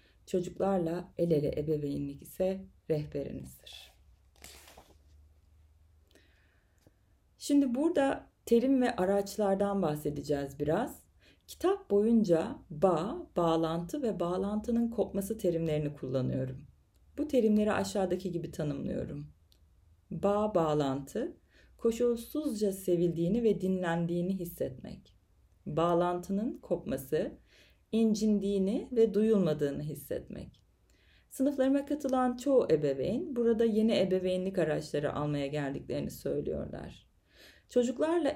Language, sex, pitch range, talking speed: Turkish, female, 145-225 Hz, 80 wpm